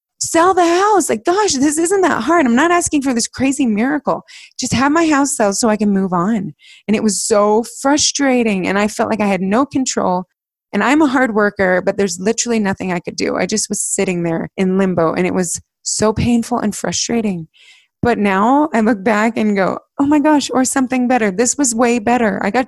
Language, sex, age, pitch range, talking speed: English, female, 20-39, 200-255 Hz, 220 wpm